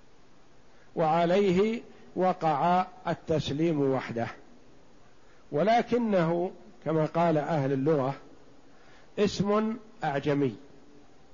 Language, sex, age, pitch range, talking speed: Arabic, male, 50-69, 155-205 Hz, 60 wpm